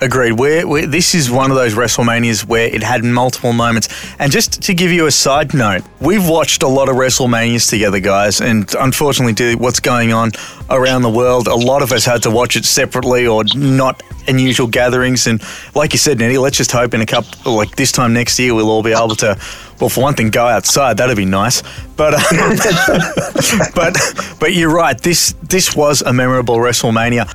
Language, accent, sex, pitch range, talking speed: English, Australian, male, 115-145 Hz, 205 wpm